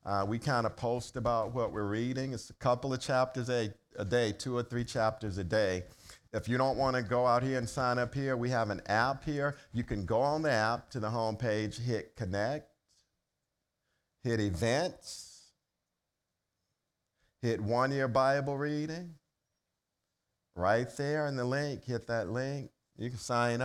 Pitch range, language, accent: 110-140 Hz, English, American